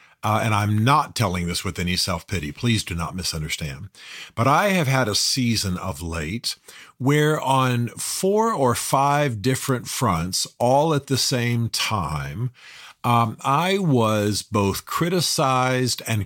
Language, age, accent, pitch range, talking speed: English, 50-69, American, 95-130 Hz, 145 wpm